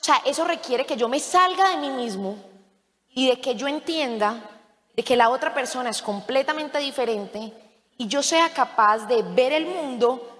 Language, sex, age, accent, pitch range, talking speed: Spanish, female, 20-39, Colombian, 230-300 Hz, 185 wpm